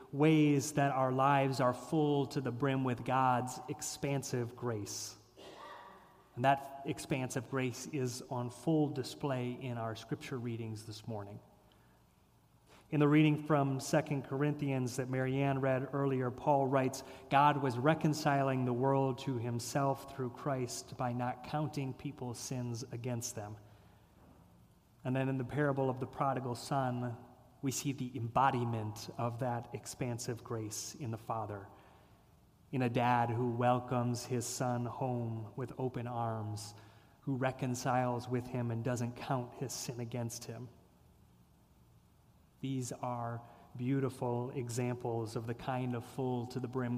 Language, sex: English, male